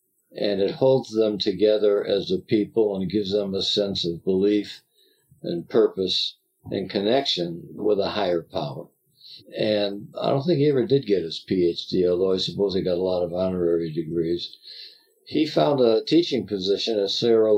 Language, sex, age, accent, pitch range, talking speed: English, male, 60-79, American, 95-135 Hz, 170 wpm